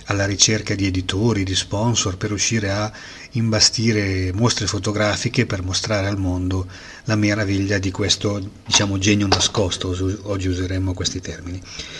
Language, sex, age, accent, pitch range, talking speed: Italian, male, 30-49, native, 95-105 Hz, 135 wpm